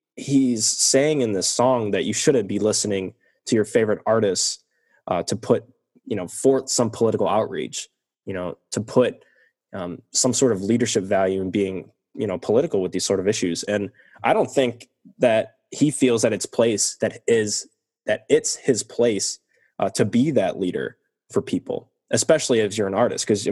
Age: 10-29